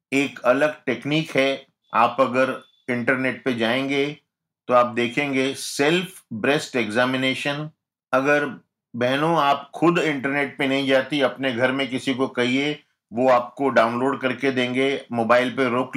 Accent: native